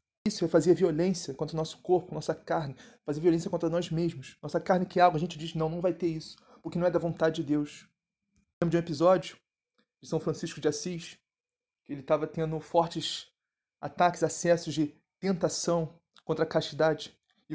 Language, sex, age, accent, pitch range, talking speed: Portuguese, male, 20-39, Brazilian, 160-185 Hz, 200 wpm